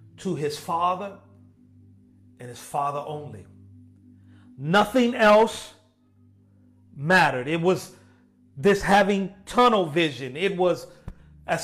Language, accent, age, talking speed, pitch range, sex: English, American, 40-59, 100 wpm, 120-185 Hz, male